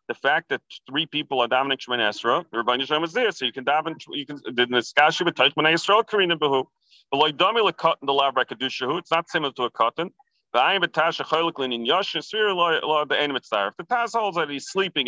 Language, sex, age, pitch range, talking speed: English, male, 40-59, 120-165 Hz, 85 wpm